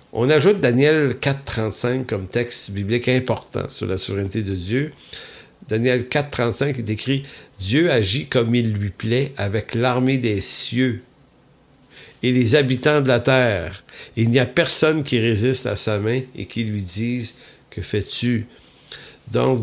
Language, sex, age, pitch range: English, male, 50-69, 110-135 Hz